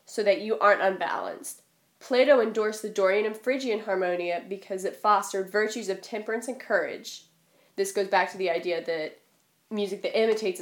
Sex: female